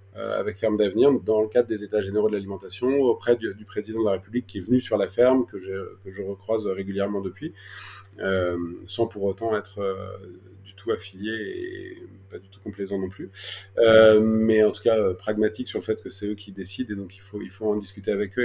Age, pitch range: 30-49, 100-120 Hz